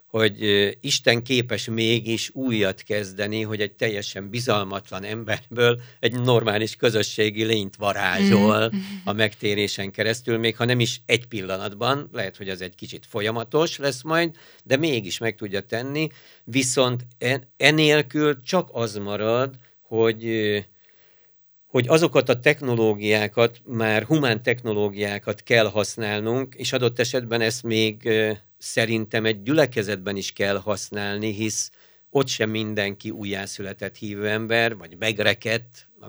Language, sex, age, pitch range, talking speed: Hungarian, male, 60-79, 105-125 Hz, 125 wpm